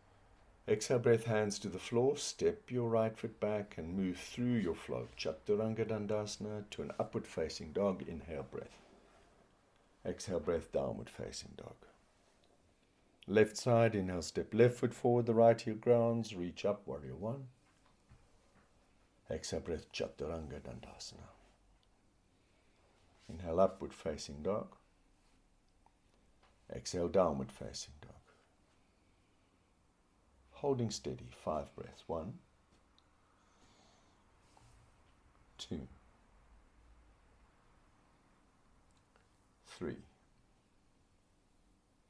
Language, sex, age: English, male, 60-79